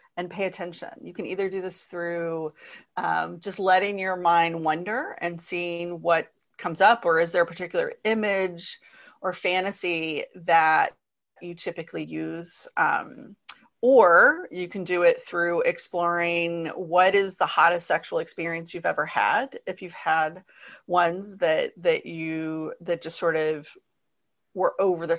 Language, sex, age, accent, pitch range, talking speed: English, female, 30-49, American, 165-195 Hz, 150 wpm